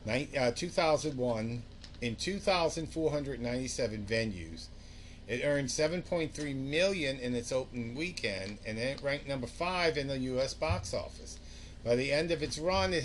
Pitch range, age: 105-140 Hz, 50-69